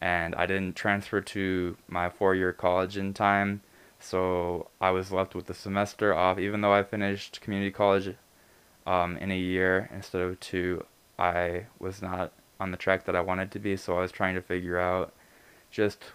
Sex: male